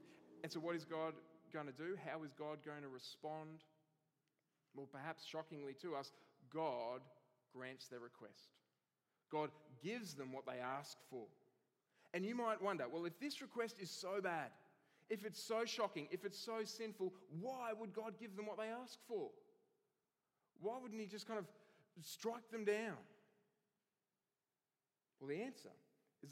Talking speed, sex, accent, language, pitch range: 160 wpm, male, Australian, English, 145-200 Hz